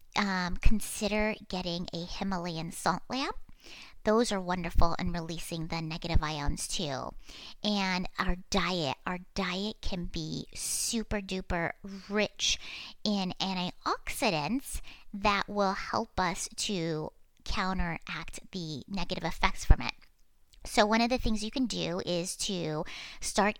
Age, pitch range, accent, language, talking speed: 30-49, 175-210 Hz, American, English, 125 wpm